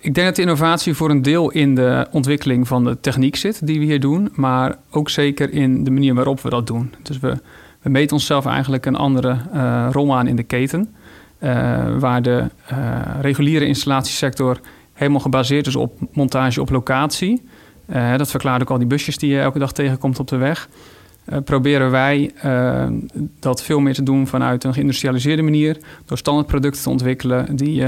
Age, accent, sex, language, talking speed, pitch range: 40-59, Dutch, male, Dutch, 195 wpm, 130-145 Hz